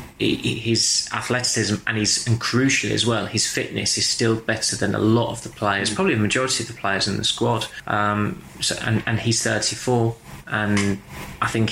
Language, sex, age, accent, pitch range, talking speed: English, male, 20-39, British, 100-115 Hz, 190 wpm